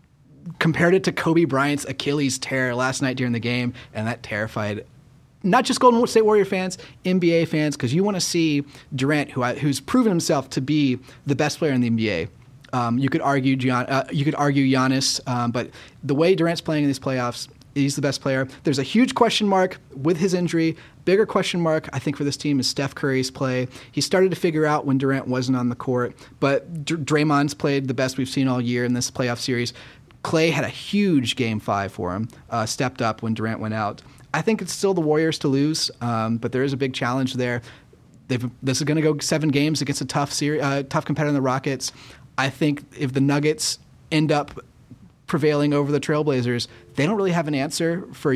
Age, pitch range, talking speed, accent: 30-49, 125-155 Hz, 215 wpm, American